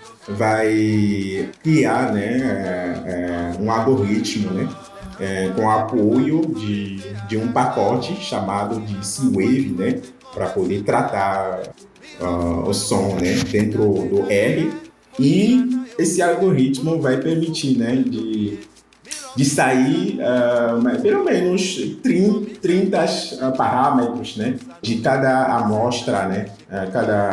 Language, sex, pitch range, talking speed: Portuguese, male, 105-150 Hz, 105 wpm